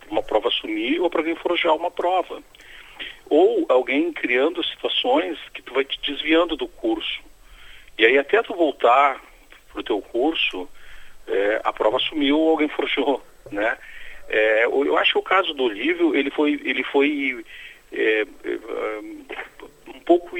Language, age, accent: Portuguese, 40-59, Brazilian